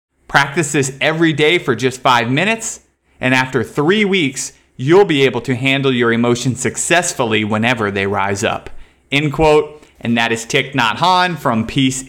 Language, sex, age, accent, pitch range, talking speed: English, male, 30-49, American, 115-145 Hz, 170 wpm